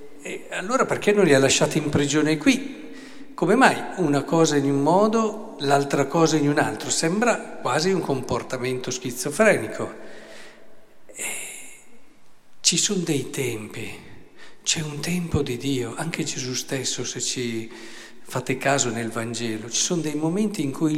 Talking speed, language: 150 wpm, Italian